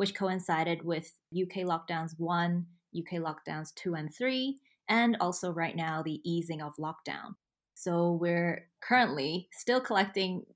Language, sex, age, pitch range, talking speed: English, female, 20-39, 165-190 Hz, 135 wpm